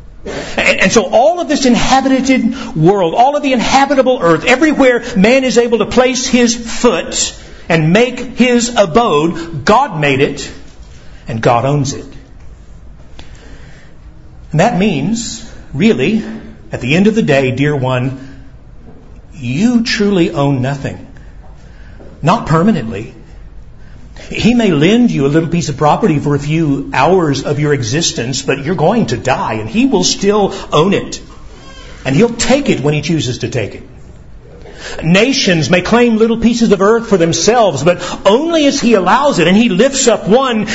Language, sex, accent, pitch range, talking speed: English, male, American, 160-240 Hz, 155 wpm